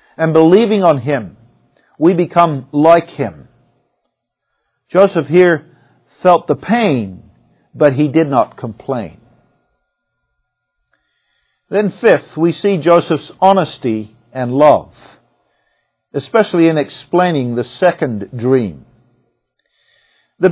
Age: 50-69